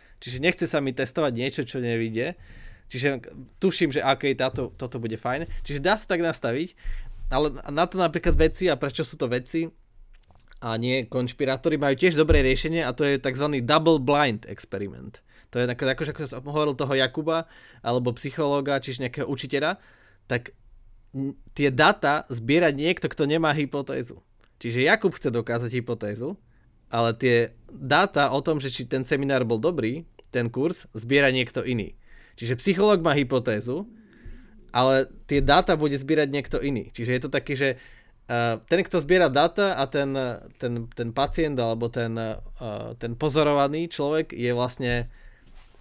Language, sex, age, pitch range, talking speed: Slovak, male, 20-39, 120-155 Hz, 155 wpm